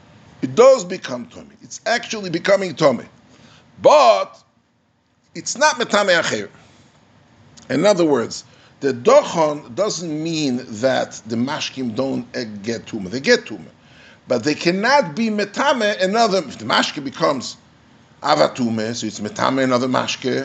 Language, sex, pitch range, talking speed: English, male, 145-230 Hz, 130 wpm